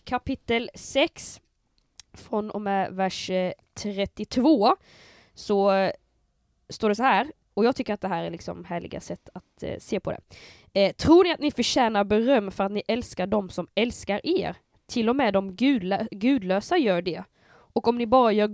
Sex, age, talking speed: female, 20-39, 170 wpm